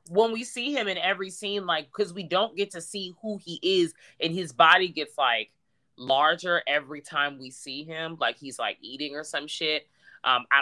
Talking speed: 210 wpm